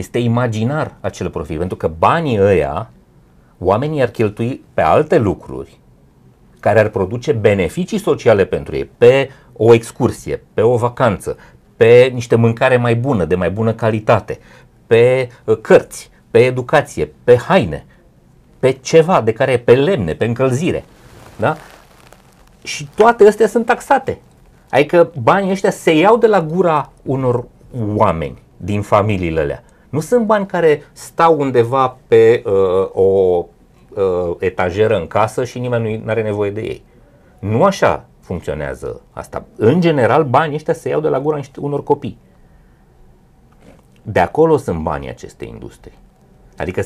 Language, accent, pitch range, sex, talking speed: Romanian, native, 110-165 Hz, male, 140 wpm